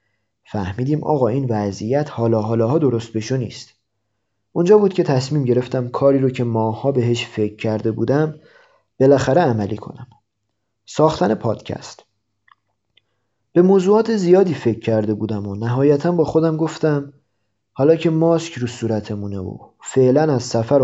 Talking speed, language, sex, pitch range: 135 wpm, Persian, male, 110-145 Hz